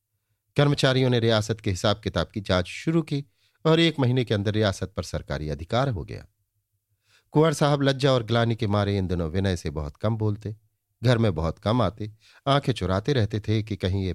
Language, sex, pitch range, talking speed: Hindi, male, 100-120 Hz, 200 wpm